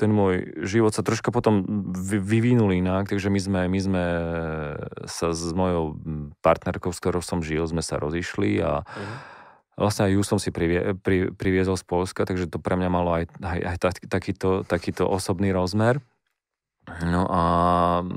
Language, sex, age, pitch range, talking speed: Slovak, male, 30-49, 85-95 Hz, 160 wpm